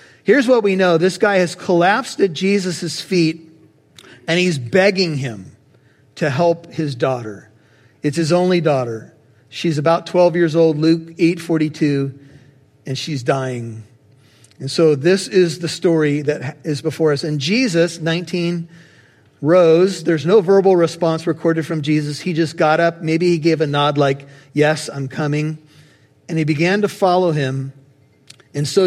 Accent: American